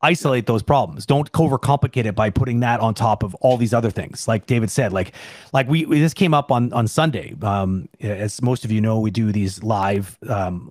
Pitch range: 105-135 Hz